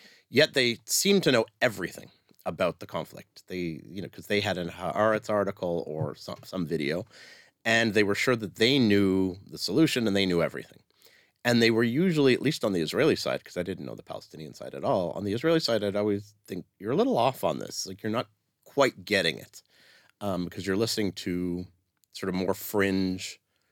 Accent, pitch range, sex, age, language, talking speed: American, 90-110 Hz, male, 30-49, Hebrew, 205 wpm